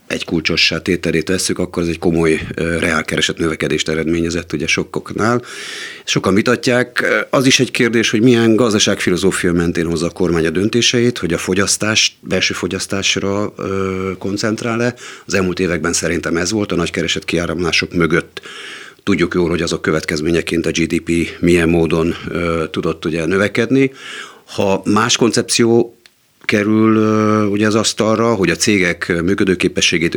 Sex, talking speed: male, 140 wpm